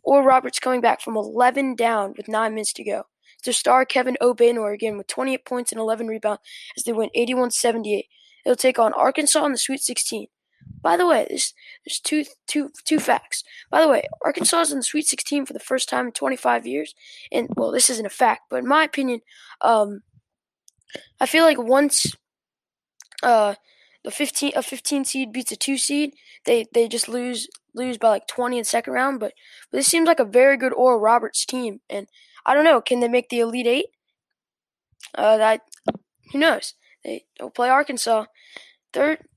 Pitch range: 225-285 Hz